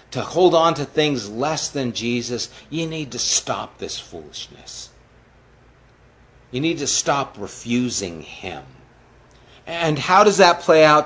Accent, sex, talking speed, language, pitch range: American, male, 140 wpm, English, 120-155 Hz